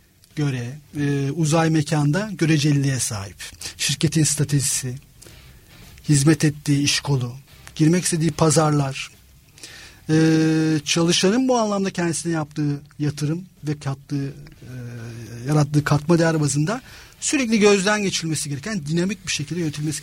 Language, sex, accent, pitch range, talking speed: Turkish, male, native, 145-205 Hz, 110 wpm